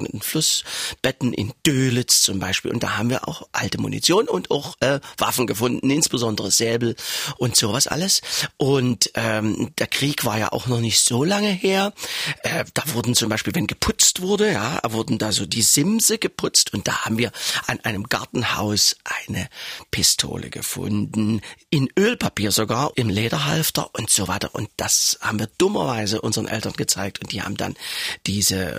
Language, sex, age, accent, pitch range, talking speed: German, male, 40-59, German, 110-170 Hz, 170 wpm